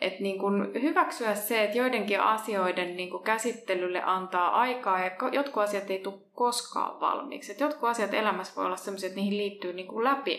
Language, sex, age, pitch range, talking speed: Finnish, female, 20-39, 190-235 Hz, 175 wpm